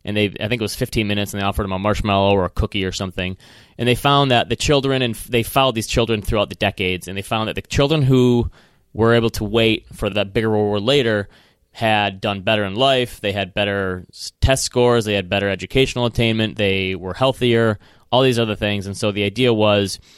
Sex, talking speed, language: male, 230 wpm, English